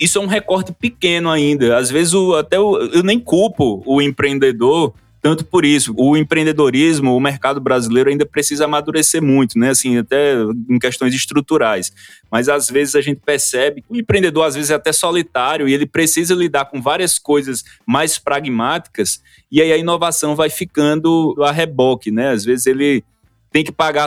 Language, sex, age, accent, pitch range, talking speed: Portuguese, male, 20-39, Brazilian, 130-165 Hz, 180 wpm